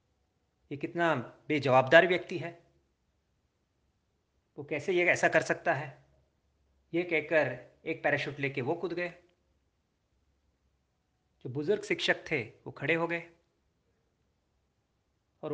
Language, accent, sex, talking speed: Hindi, native, male, 115 wpm